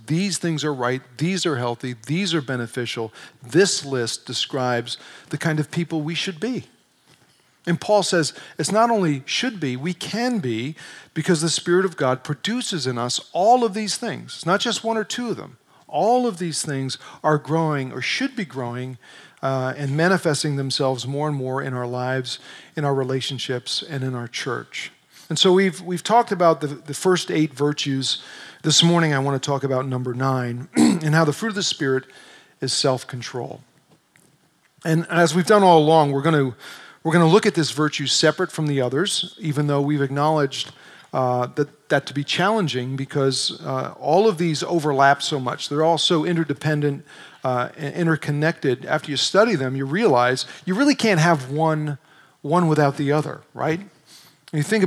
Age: 40-59